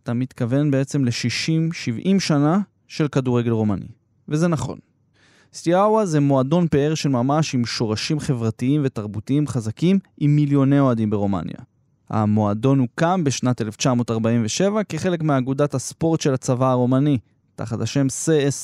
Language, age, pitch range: Hebrew, 20-39, 120-160 Hz